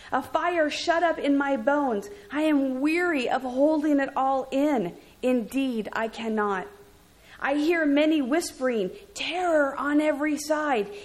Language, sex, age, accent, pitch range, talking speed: English, female, 40-59, American, 210-290 Hz, 140 wpm